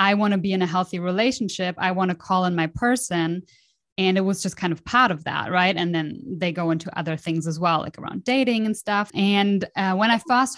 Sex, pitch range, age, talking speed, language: female, 175-210 Hz, 20-39, 250 wpm, English